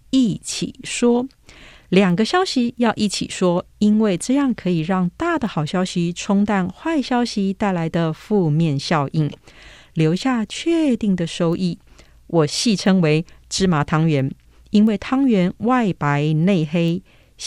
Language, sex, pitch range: Chinese, female, 165-250 Hz